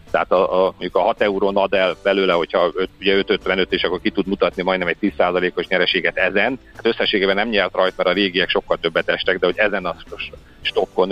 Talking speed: 195 wpm